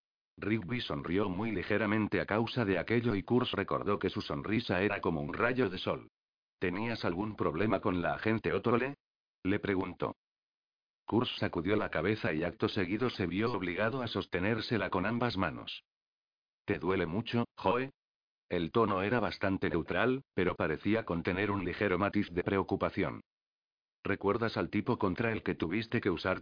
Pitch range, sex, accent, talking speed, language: 95-115 Hz, male, Spanish, 160 wpm, Spanish